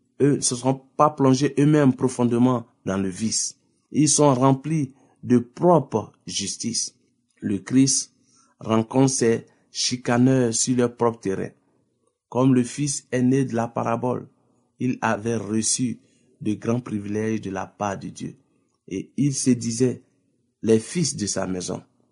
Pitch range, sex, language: 110-130 Hz, male, French